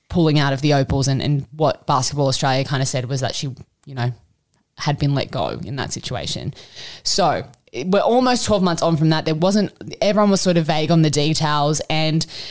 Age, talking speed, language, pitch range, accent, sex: 20-39, 220 wpm, English, 140-165 Hz, Australian, female